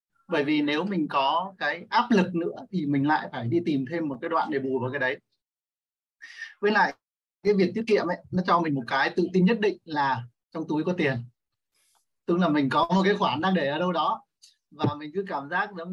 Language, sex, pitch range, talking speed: Vietnamese, male, 150-195 Hz, 235 wpm